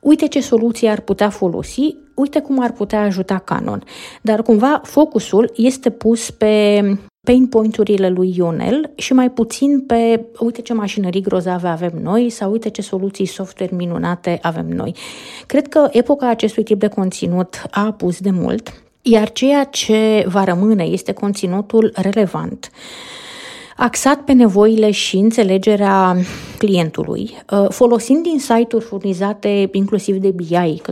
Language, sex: Romanian, female